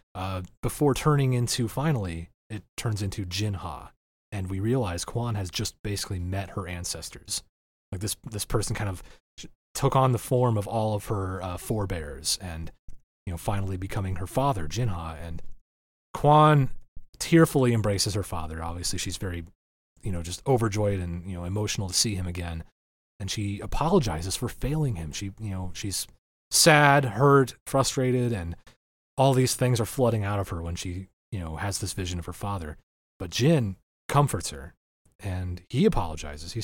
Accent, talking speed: American, 170 wpm